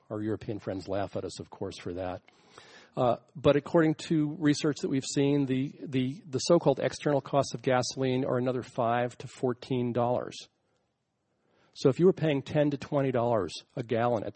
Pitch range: 110-140 Hz